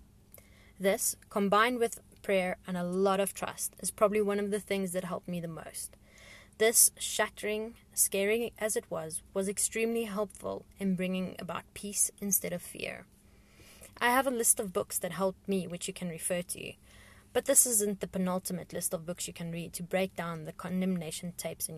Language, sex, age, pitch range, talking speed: English, female, 20-39, 170-205 Hz, 185 wpm